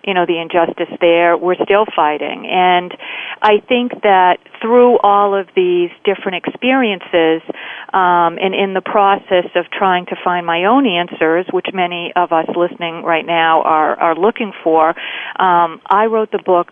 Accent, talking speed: American, 165 wpm